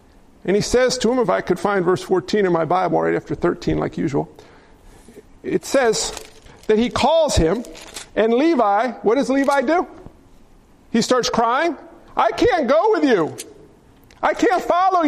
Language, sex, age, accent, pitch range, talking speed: English, male, 50-69, American, 195-275 Hz, 165 wpm